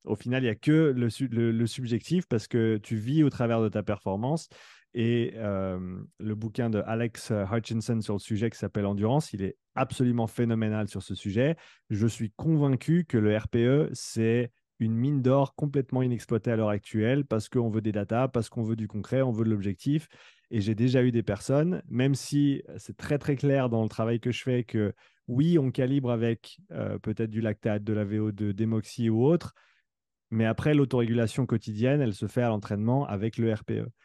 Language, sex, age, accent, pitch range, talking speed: French, male, 30-49, French, 110-130 Hz, 195 wpm